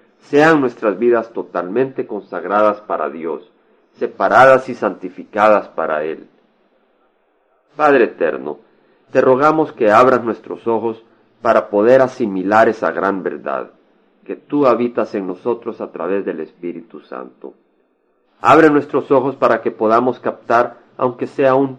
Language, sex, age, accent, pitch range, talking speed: Spanish, male, 40-59, Mexican, 100-130 Hz, 125 wpm